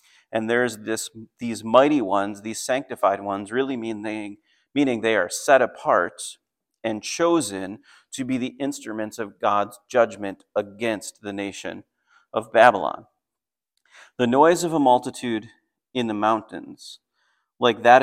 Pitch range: 110-130 Hz